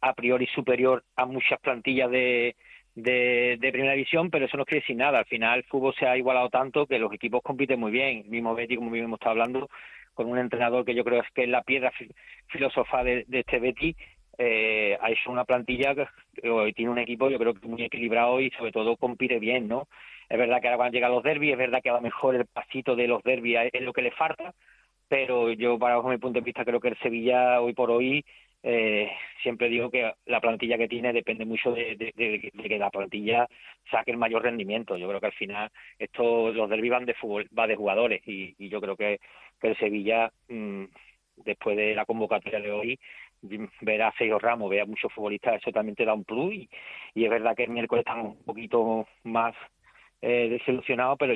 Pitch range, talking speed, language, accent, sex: 115-125 Hz, 220 wpm, Spanish, Spanish, male